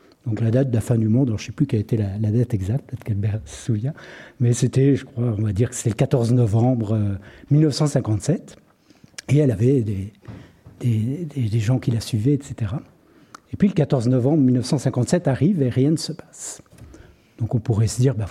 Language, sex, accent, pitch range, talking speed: French, male, French, 120-155 Hz, 220 wpm